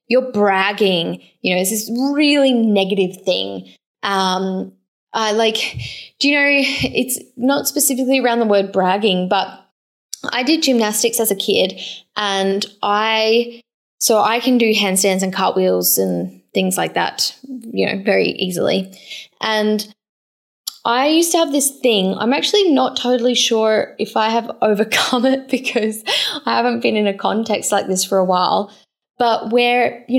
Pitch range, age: 195-250 Hz, 10-29